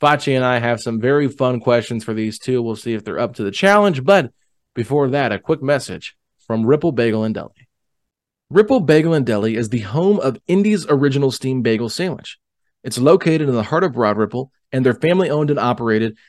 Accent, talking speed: American, 210 wpm